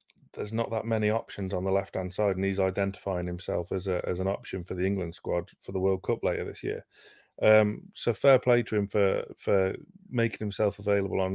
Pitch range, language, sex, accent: 95-110 Hz, English, male, British